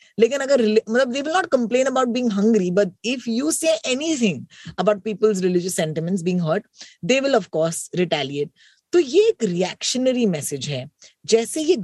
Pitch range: 180-250 Hz